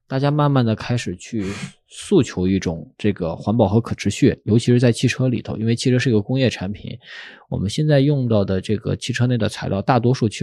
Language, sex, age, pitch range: Chinese, male, 20-39, 100-130 Hz